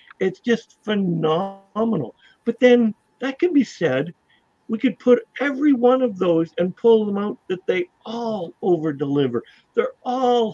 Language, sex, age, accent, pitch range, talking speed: English, male, 50-69, American, 185-230 Hz, 150 wpm